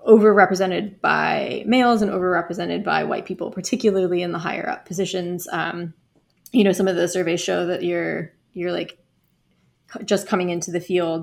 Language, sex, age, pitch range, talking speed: English, female, 20-39, 175-195 Hz, 165 wpm